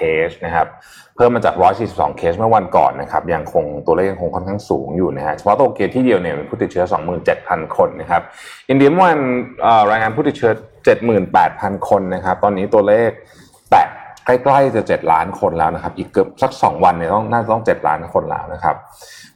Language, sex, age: Thai, male, 20-39